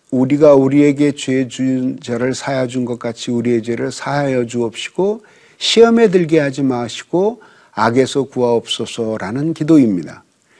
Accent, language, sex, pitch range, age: native, Korean, male, 125-180 Hz, 50-69